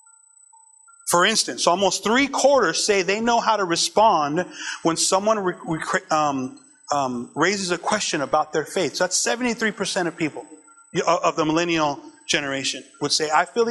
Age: 30-49